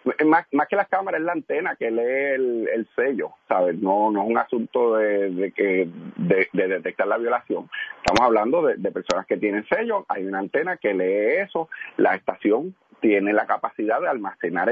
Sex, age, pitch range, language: male, 40-59, 100-145 Hz, Spanish